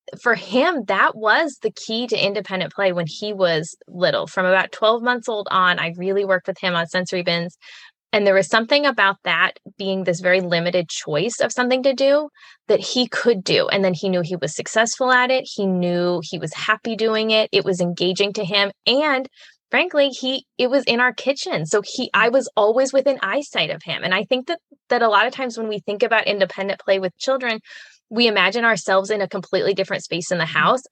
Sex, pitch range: female, 185-245 Hz